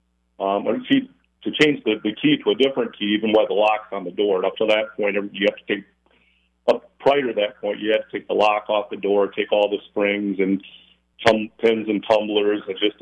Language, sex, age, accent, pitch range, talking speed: English, male, 50-69, American, 90-110 Hz, 240 wpm